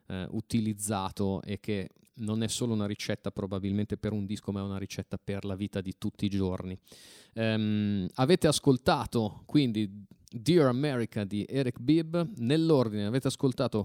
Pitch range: 105-140 Hz